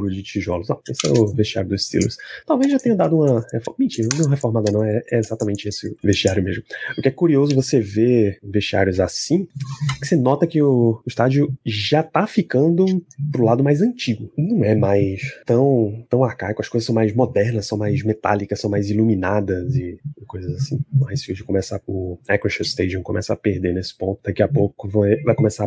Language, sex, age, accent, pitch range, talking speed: Portuguese, male, 20-39, Brazilian, 105-140 Hz, 200 wpm